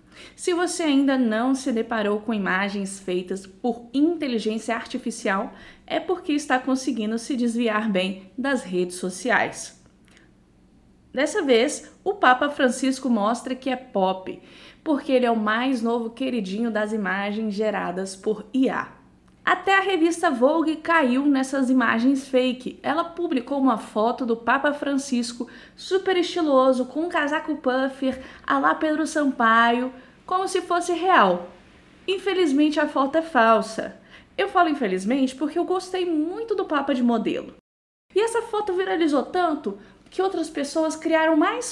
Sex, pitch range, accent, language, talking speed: female, 225-320 Hz, Brazilian, Portuguese, 140 wpm